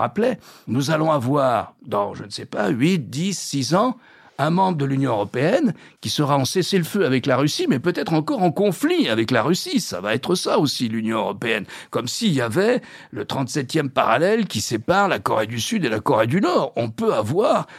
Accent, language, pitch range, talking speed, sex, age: French, French, 135-185 Hz, 205 wpm, male, 60-79